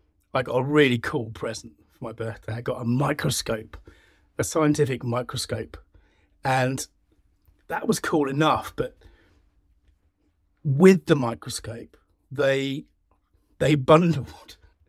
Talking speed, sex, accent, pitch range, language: 115 wpm, male, British, 95-150 Hz, English